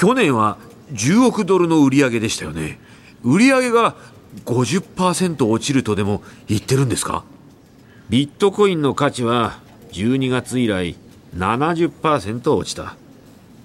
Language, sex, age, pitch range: Japanese, male, 40-59, 95-140 Hz